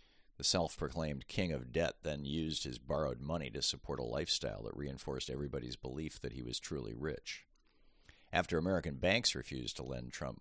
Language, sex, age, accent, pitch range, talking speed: English, male, 50-69, American, 65-80 Hz, 175 wpm